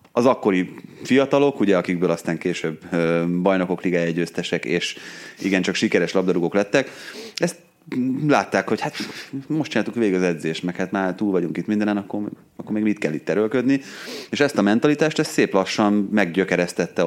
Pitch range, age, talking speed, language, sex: 90-115 Hz, 30-49, 160 wpm, Hungarian, male